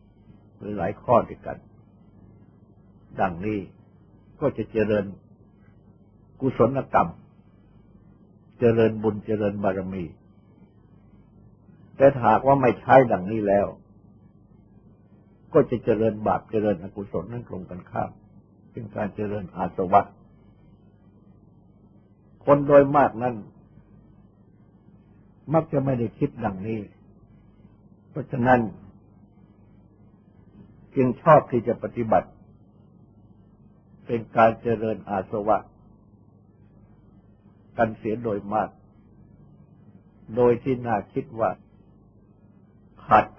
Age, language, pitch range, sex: 60-79, Thai, 100-115 Hz, male